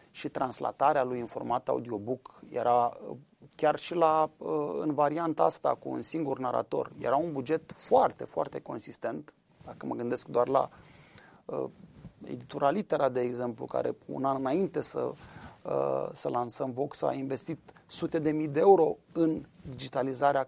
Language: Romanian